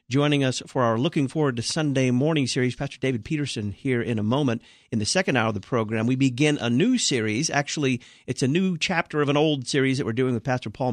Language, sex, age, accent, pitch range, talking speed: English, male, 50-69, American, 115-145 Hz, 240 wpm